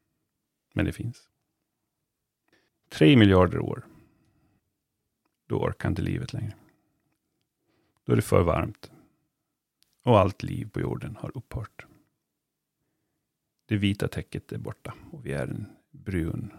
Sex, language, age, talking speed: male, Swedish, 40-59, 120 wpm